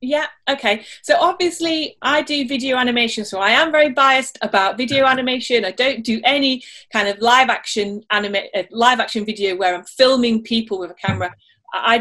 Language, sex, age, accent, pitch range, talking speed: English, female, 30-49, British, 195-250 Hz, 180 wpm